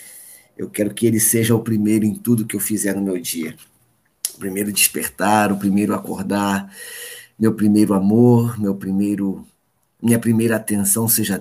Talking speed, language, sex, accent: 145 wpm, Portuguese, male, Brazilian